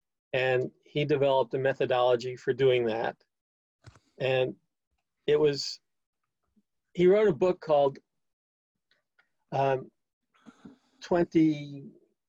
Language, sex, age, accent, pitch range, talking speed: English, male, 50-69, American, 130-180 Hz, 90 wpm